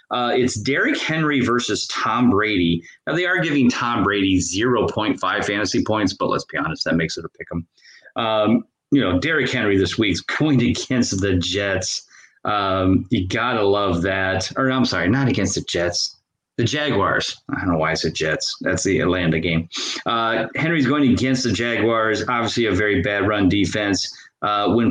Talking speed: 190 wpm